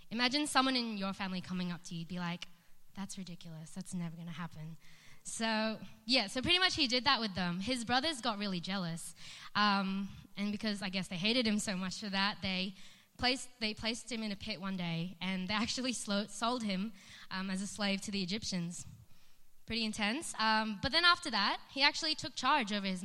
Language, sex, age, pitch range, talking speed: English, female, 20-39, 190-230 Hz, 205 wpm